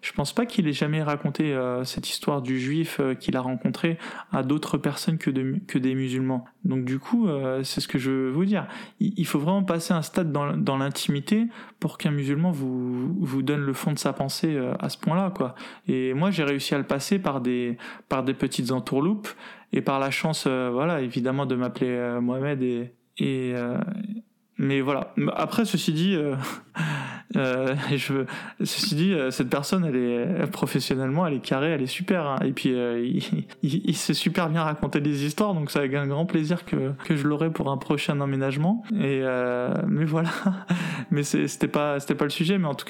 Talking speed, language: 210 wpm, French